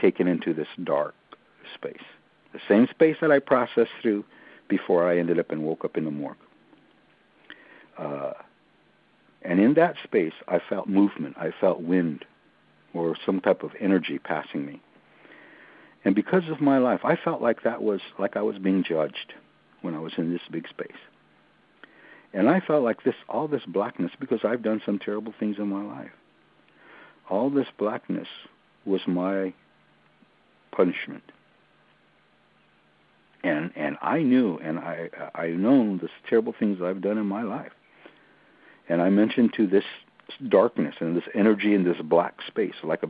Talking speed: 165 wpm